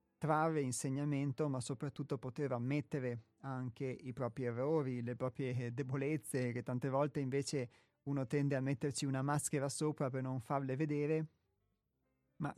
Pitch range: 130-155 Hz